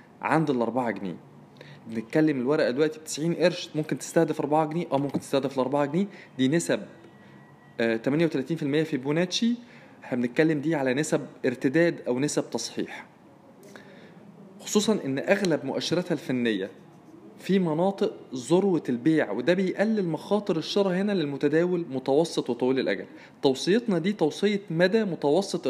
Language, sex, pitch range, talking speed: Arabic, male, 135-185 Hz, 130 wpm